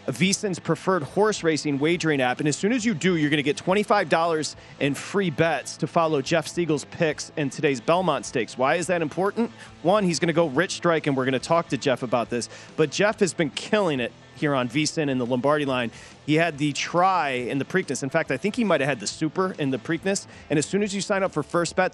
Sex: male